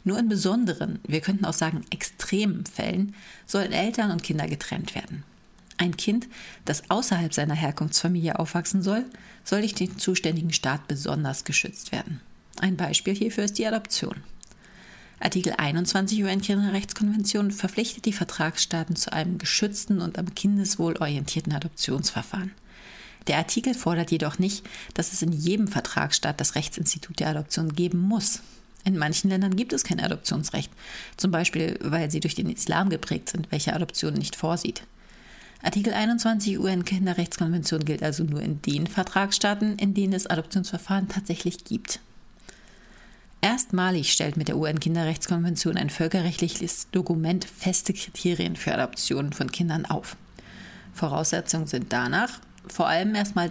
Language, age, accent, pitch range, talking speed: German, 40-59, German, 165-200 Hz, 140 wpm